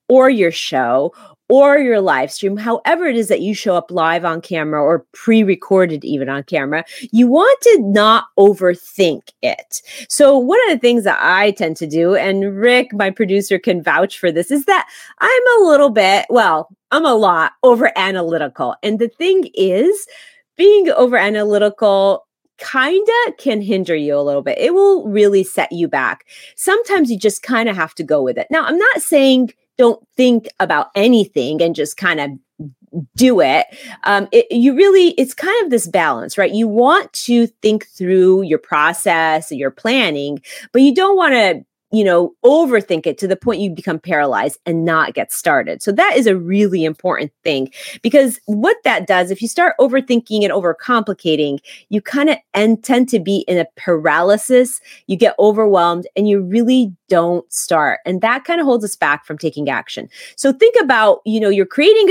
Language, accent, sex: English, American, female